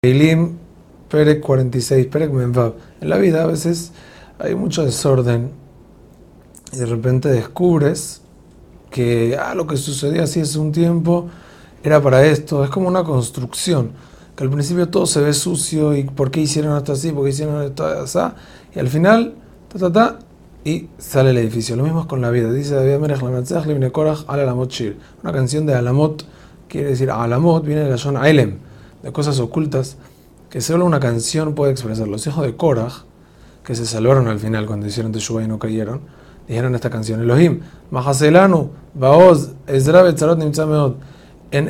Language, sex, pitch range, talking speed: Spanish, male, 125-160 Hz, 170 wpm